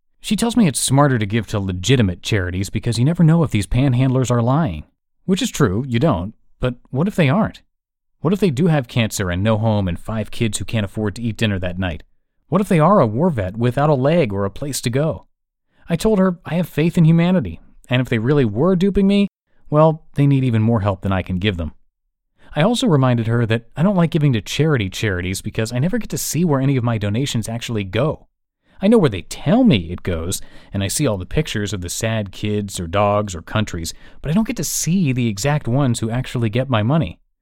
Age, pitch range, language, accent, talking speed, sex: 30-49, 105-155 Hz, English, American, 240 wpm, male